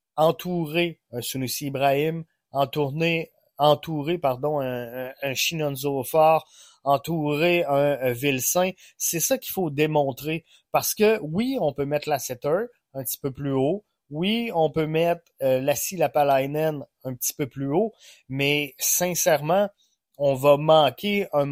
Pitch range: 140-180 Hz